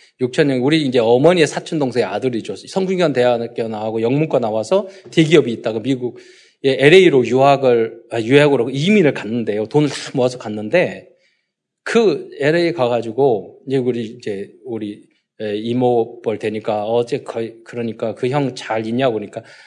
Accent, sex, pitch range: native, male, 120-195 Hz